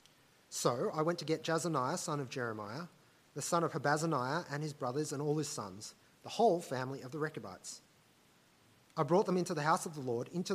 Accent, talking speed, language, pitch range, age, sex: Australian, 205 wpm, English, 130-175 Hz, 30-49, male